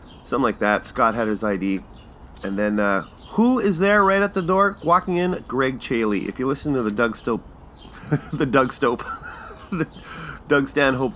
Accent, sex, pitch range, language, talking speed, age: American, male, 95-140 Hz, English, 185 wpm, 30-49